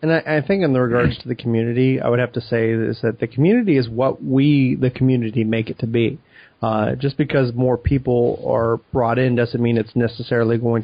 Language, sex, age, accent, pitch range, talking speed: English, male, 30-49, American, 115-130 Hz, 225 wpm